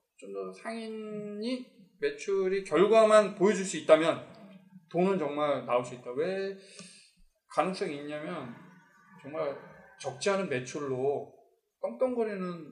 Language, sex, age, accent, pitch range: Korean, male, 20-39, native, 135-210 Hz